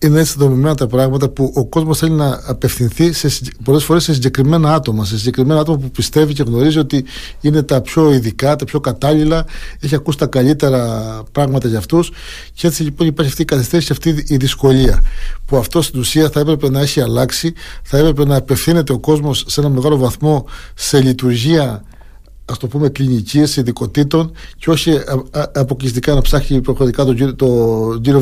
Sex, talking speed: male, 180 wpm